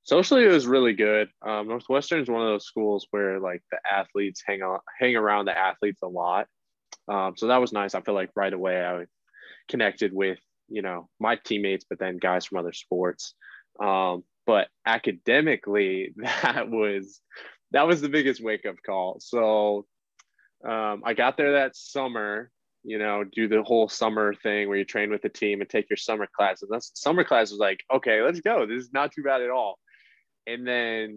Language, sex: English, male